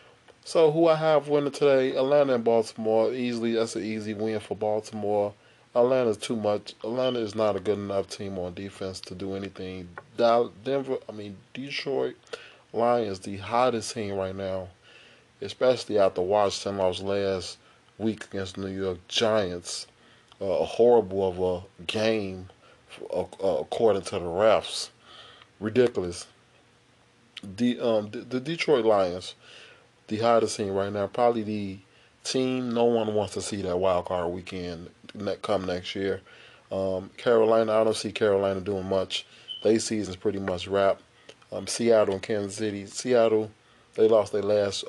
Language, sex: English, male